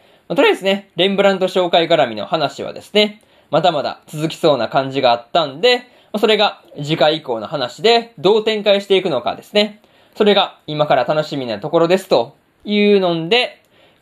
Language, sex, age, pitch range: Japanese, male, 20-39, 150-215 Hz